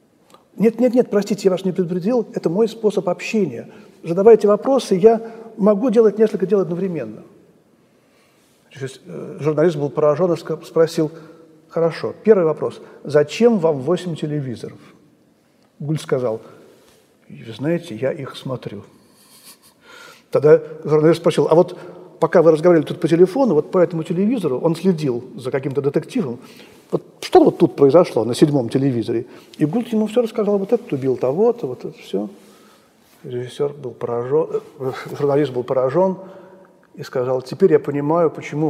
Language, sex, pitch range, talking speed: Russian, male, 150-215 Hz, 140 wpm